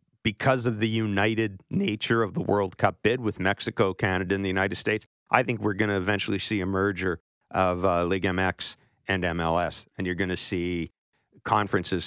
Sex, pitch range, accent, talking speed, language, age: male, 95-115 Hz, American, 190 wpm, English, 40-59